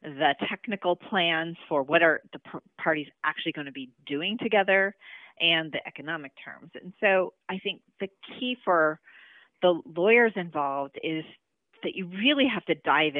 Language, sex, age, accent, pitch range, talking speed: English, female, 30-49, American, 145-185 Hz, 160 wpm